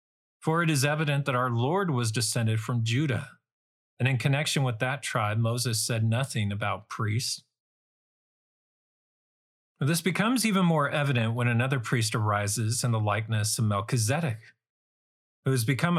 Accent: American